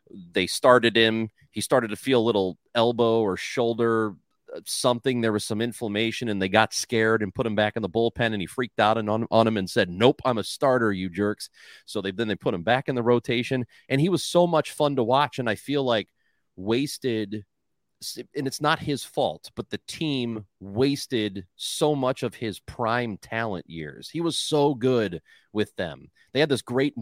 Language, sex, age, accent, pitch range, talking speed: English, male, 30-49, American, 100-125 Hz, 205 wpm